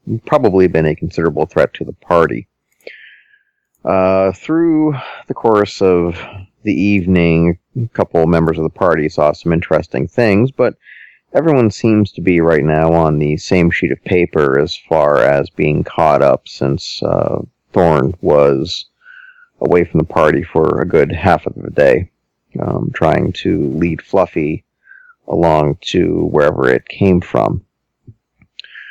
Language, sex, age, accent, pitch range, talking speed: English, male, 40-59, American, 85-115 Hz, 145 wpm